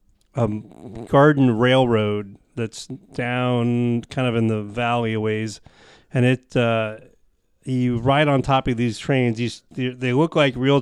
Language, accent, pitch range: English, American, 110-130 Hz